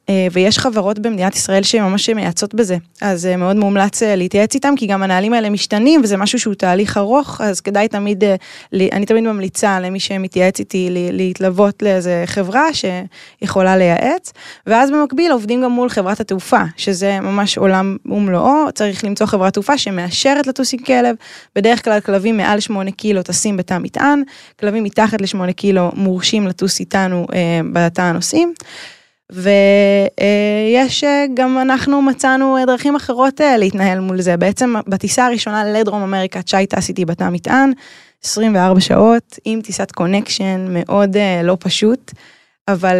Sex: female